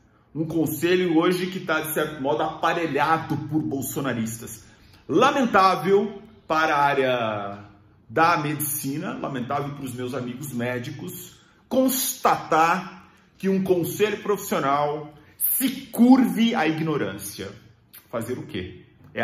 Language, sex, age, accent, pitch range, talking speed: English, male, 40-59, Brazilian, 140-210 Hz, 110 wpm